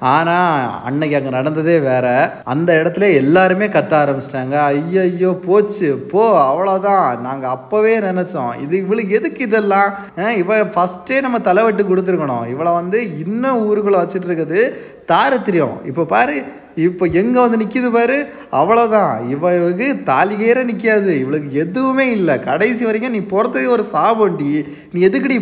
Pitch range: 145-200 Hz